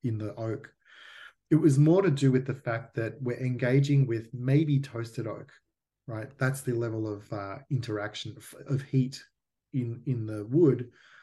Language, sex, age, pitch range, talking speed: English, male, 30-49, 115-135 Hz, 170 wpm